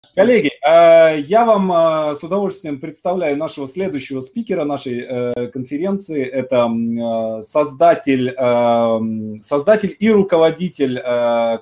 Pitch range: 120-165 Hz